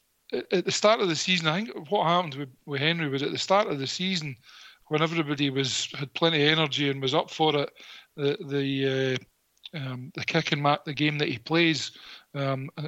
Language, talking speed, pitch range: English, 200 wpm, 140-165 Hz